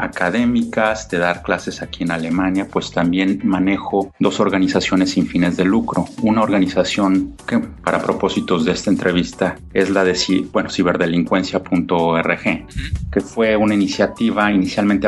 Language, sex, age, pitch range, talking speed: Spanish, male, 30-49, 85-100 Hz, 130 wpm